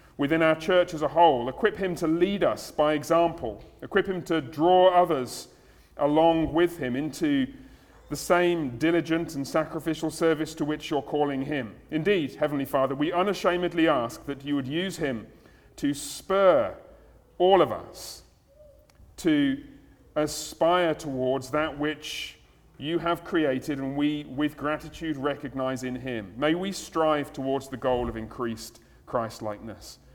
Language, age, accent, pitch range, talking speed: English, 40-59, British, 130-165 Hz, 145 wpm